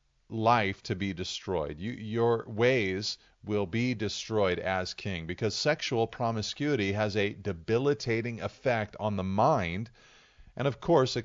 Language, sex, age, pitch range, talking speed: English, male, 40-59, 95-115 Hz, 135 wpm